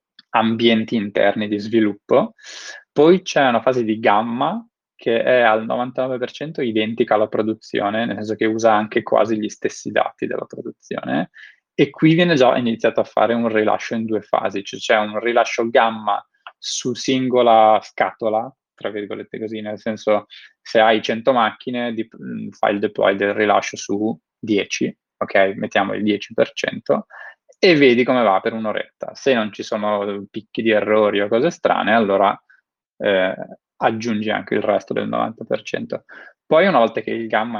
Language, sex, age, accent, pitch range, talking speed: Italian, male, 20-39, native, 105-115 Hz, 155 wpm